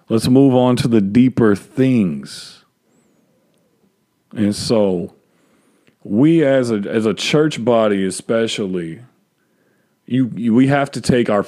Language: English